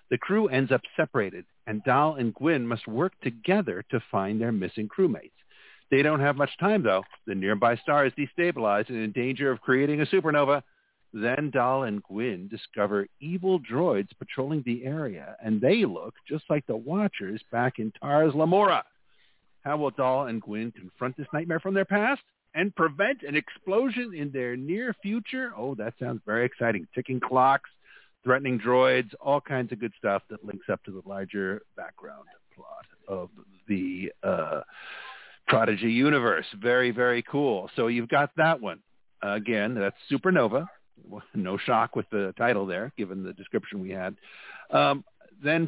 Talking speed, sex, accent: 165 wpm, male, American